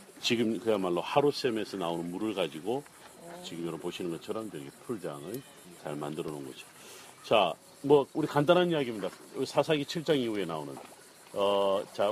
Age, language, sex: 40-59, Korean, male